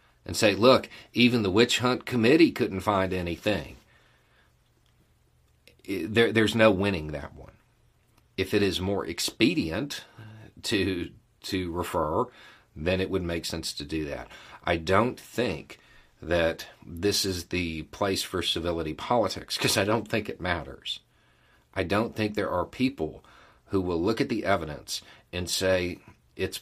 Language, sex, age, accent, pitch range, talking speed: English, male, 40-59, American, 80-105 Hz, 145 wpm